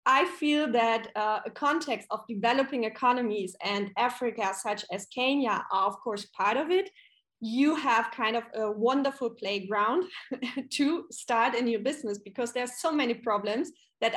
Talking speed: 165 wpm